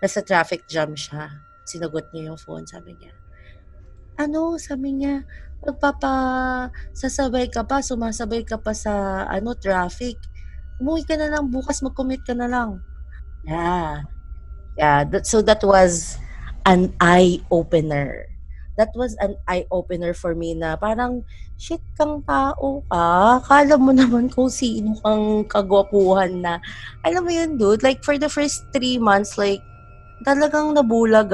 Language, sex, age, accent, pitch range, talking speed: English, female, 20-39, Filipino, 160-245 Hz, 140 wpm